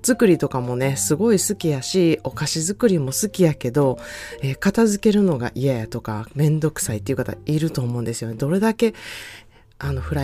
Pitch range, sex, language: 130-190 Hz, female, Japanese